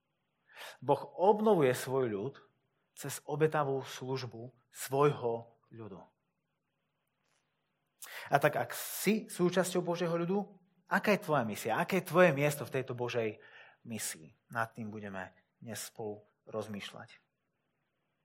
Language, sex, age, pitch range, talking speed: Slovak, male, 30-49, 125-175 Hz, 110 wpm